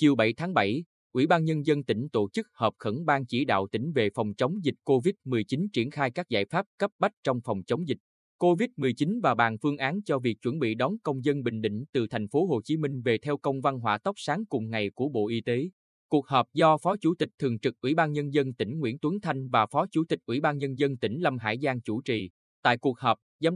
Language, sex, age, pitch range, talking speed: Vietnamese, male, 20-39, 115-155 Hz, 255 wpm